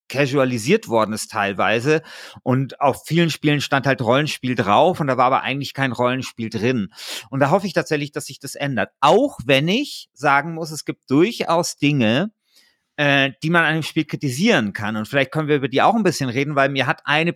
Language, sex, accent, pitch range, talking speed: German, male, German, 130-165 Hz, 205 wpm